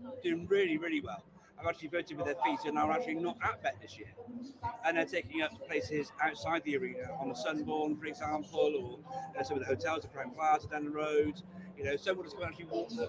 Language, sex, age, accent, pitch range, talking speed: English, male, 40-59, British, 150-225 Hz, 240 wpm